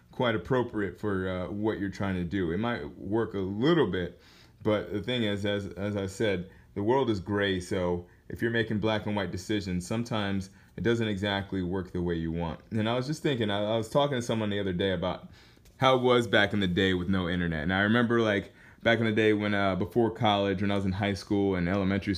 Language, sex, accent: English, male, American